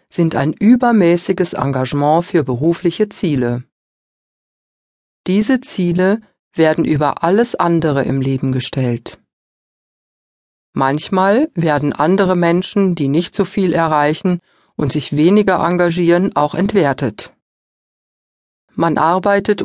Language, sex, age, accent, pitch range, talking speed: German, female, 40-59, German, 150-195 Hz, 100 wpm